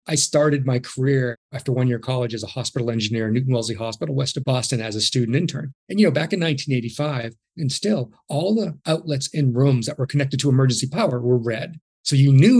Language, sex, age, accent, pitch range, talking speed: English, male, 40-59, American, 125-155 Hz, 230 wpm